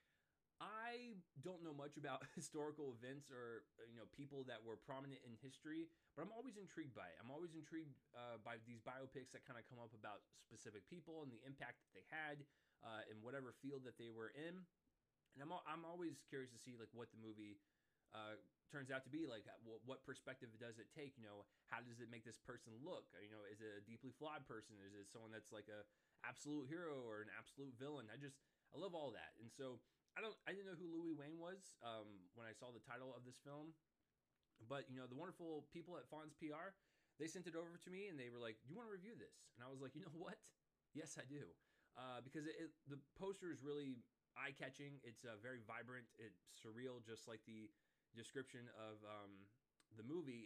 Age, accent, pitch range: 20-39, American, 115-155 Hz